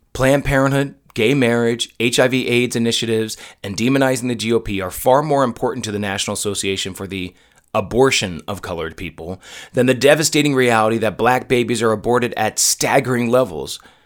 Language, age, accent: English, 30-49, American